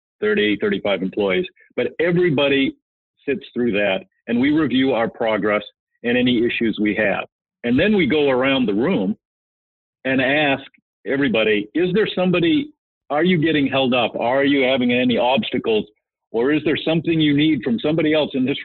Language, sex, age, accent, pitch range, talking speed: English, male, 50-69, American, 105-150 Hz, 165 wpm